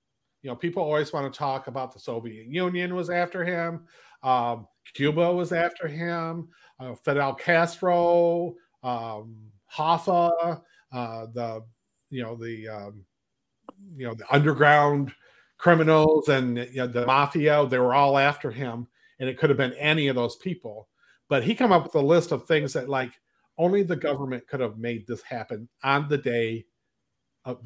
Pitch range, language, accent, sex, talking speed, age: 120-150 Hz, English, American, male, 165 wpm, 40-59